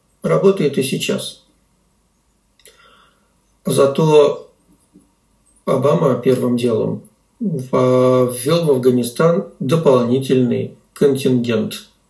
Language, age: Russian, 50-69